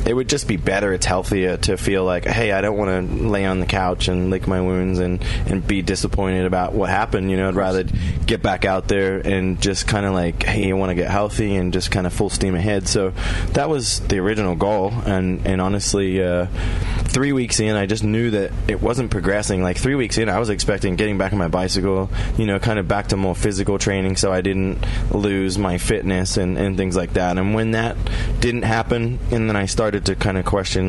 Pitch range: 95-105 Hz